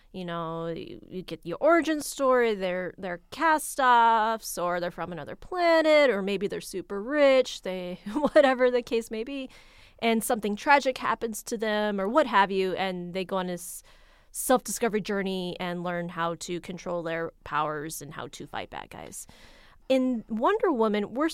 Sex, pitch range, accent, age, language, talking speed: female, 190-250 Hz, American, 20-39, English, 170 wpm